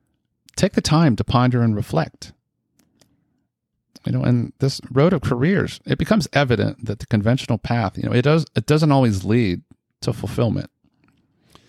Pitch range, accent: 100-130 Hz, American